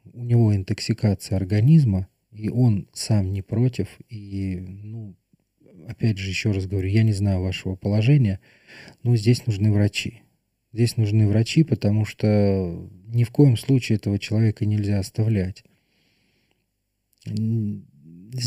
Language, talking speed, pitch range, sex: Russian, 125 wpm, 100-120 Hz, male